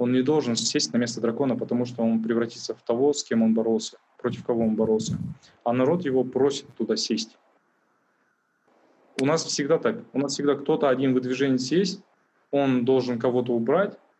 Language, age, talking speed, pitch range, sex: Russian, 20-39, 180 wpm, 115-140 Hz, male